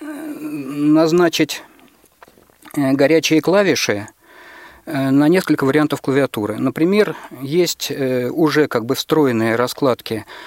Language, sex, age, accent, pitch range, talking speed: Russian, male, 40-59, native, 130-160 Hz, 80 wpm